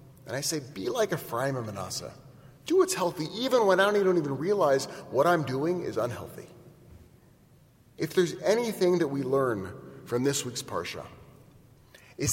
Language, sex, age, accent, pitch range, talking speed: English, male, 30-49, American, 125-165 Hz, 160 wpm